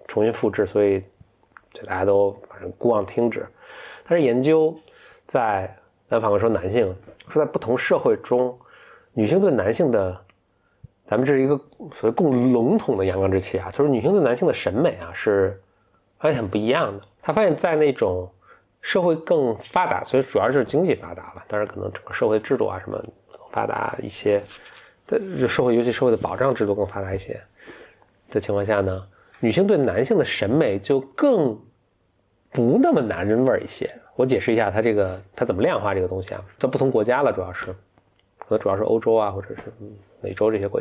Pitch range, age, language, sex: 95-125 Hz, 20-39, Chinese, male